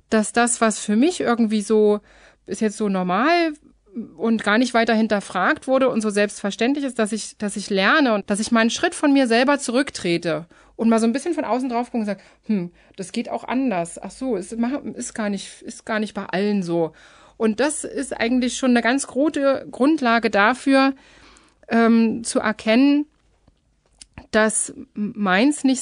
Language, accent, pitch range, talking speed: German, German, 205-255 Hz, 180 wpm